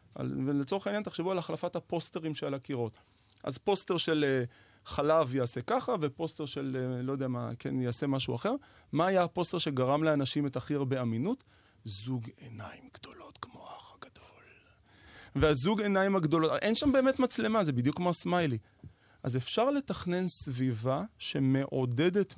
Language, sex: Hebrew, male